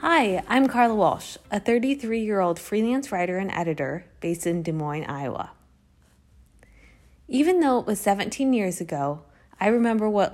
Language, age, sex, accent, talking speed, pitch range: English, 20-39, female, American, 145 wpm, 155-205 Hz